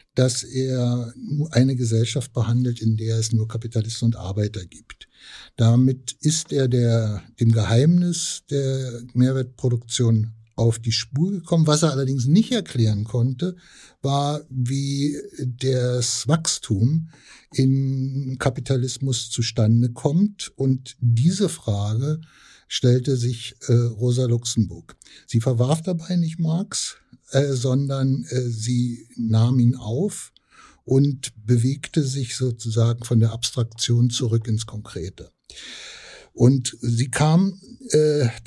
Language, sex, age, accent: German, male, 60-79, German